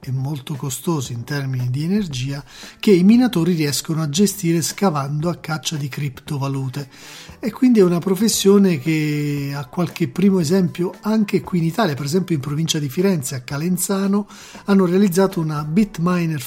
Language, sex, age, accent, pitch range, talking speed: Italian, male, 40-59, native, 145-190 Hz, 160 wpm